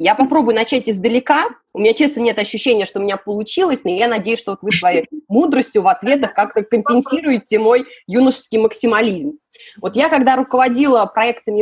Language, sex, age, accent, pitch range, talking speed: Russian, female, 20-39, native, 195-270 Hz, 165 wpm